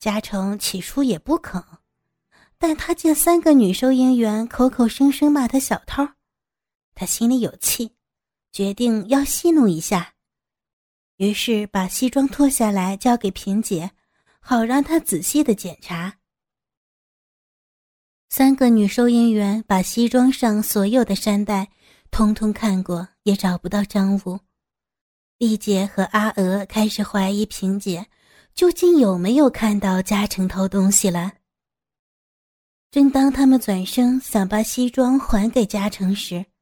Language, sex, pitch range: Chinese, female, 195-265 Hz